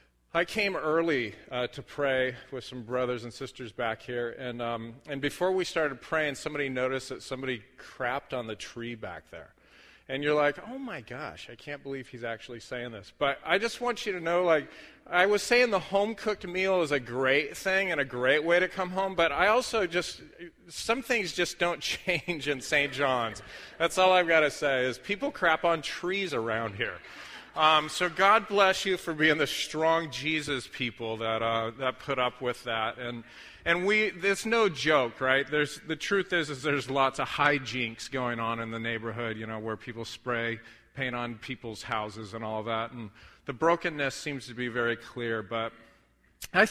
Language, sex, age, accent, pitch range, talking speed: English, male, 40-59, American, 120-170 Hz, 195 wpm